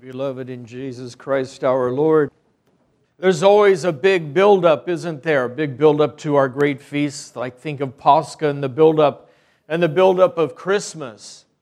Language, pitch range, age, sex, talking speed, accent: English, 150-185 Hz, 50-69, male, 165 wpm, American